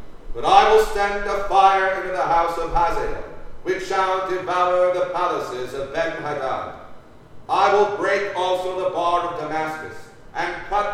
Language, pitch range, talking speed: English, 170-200 Hz, 155 wpm